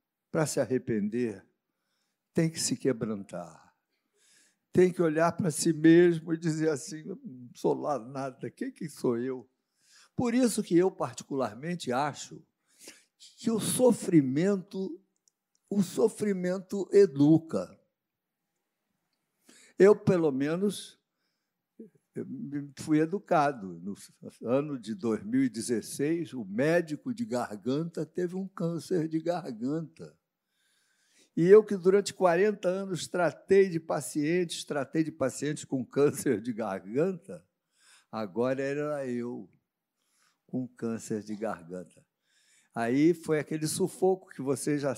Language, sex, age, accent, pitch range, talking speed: Portuguese, male, 60-79, Brazilian, 130-185 Hz, 110 wpm